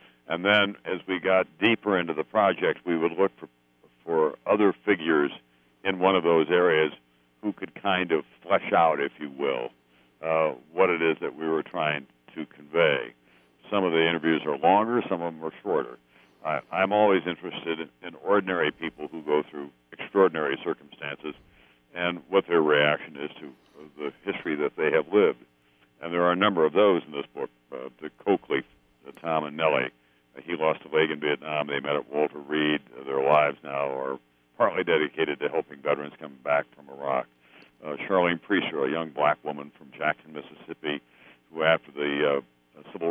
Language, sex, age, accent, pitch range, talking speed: English, male, 60-79, American, 65-80 Hz, 180 wpm